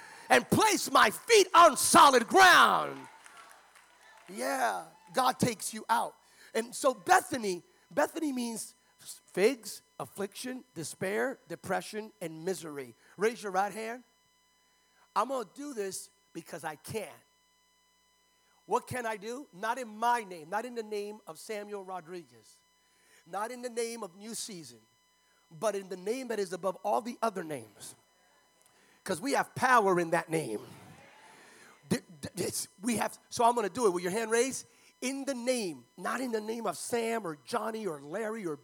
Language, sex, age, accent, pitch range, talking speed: English, male, 40-59, American, 190-260 Hz, 155 wpm